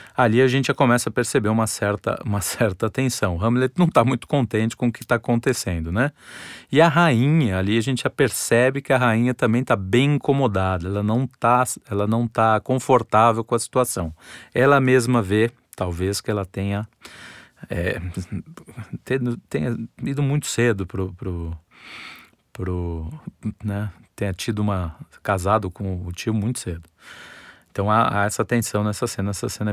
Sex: male